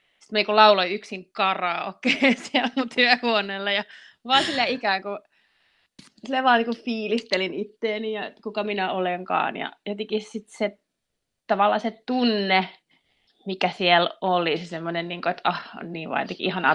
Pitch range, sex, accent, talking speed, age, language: 180-220 Hz, female, native, 135 wpm, 30-49, Finnish